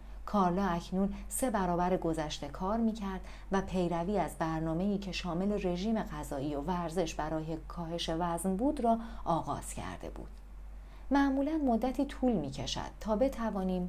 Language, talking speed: Persian, 135 wpm